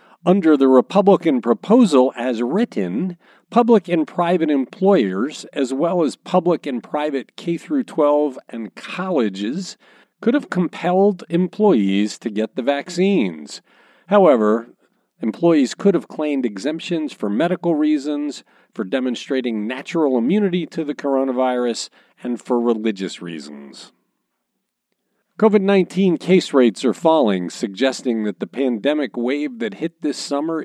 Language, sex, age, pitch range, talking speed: English, male, 40-59, 125-185 Hz, 120 wpm